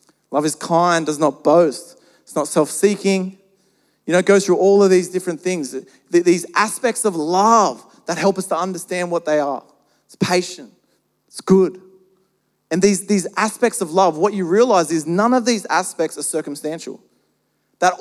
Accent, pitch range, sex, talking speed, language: Australian, 175-220 Hz, male, 175 wpm, English